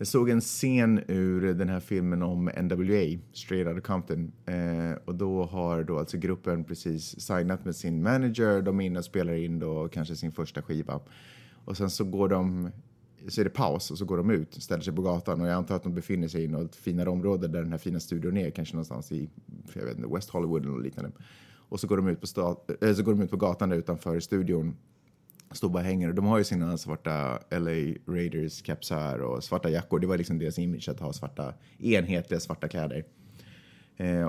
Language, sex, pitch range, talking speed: Swedish, male, 85-120 Hz, 215 wpm